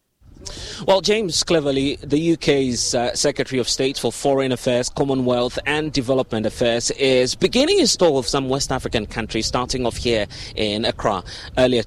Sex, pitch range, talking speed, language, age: male, 110-140 Hz, 155 wpm, English, 30-49